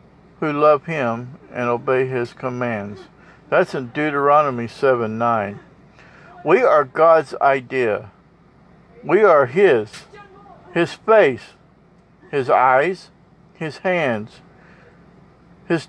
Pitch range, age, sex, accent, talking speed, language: 135-180 Hz, 50-69, male, American, 100 wpm, English